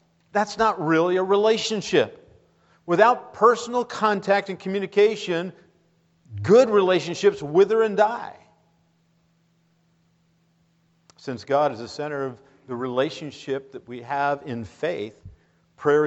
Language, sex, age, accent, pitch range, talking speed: English, male, 50-69, American, 140-175 Hz, 110 wpm